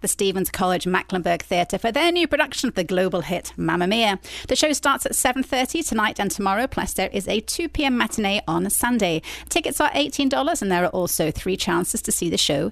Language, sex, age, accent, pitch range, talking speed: English, female, 30-49, British, 180-260 Hz, 210 wpm